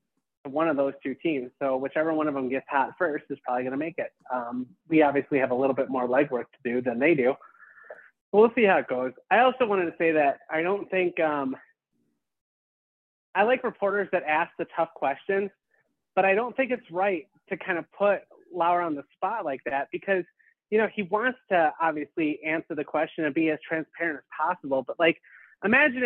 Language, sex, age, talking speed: English, male, 30-49, 210 wpm